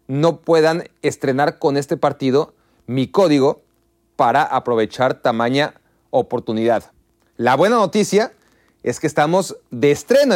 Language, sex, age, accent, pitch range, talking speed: Spanish, male, 30-49, Mexican, 130-170 Hz, 115 wpm